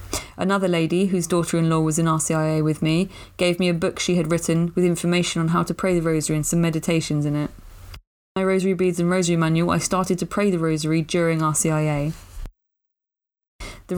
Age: 20-39